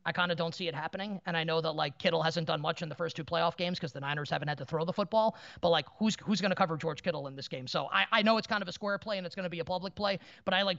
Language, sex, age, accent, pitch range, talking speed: English, male, 30-49, American, 175-220 Hz, 355 wpm